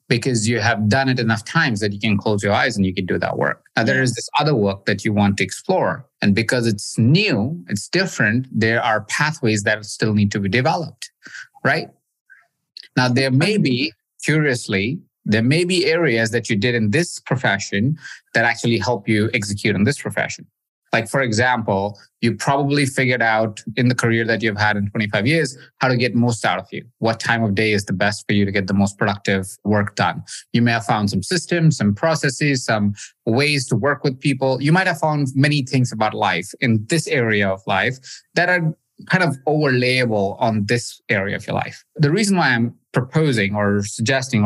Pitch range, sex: 105-140 Hz, male